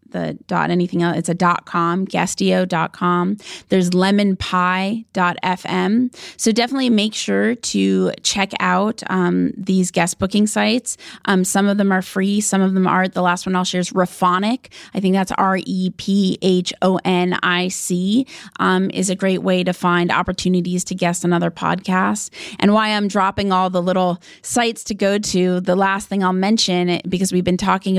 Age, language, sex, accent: 20-39, English, female, American